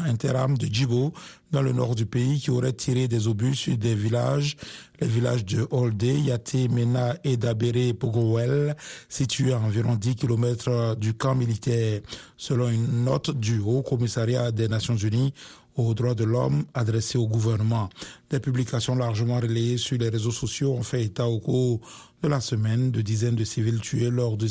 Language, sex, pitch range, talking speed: Italian, male, 115-130 Hz, 175 wpm